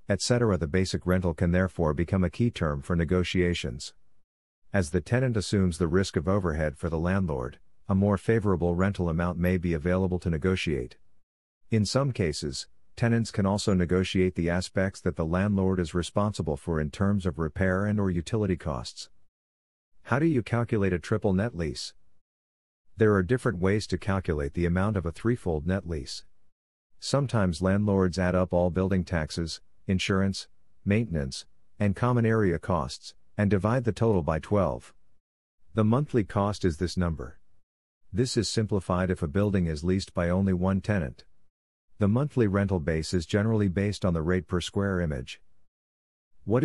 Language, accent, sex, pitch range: English, American, male, 85-100 Hz